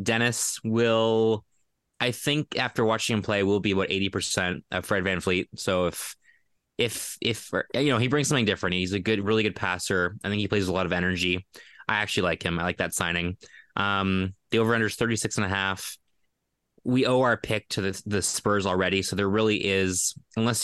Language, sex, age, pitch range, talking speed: English, male, 20-39, 90-110 Hz, 205 wpm